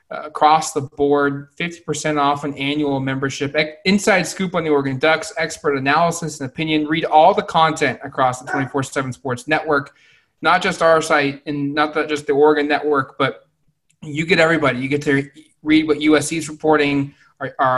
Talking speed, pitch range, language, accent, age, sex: 190 wpm, 140-155 Hz, English, American, 20-39, male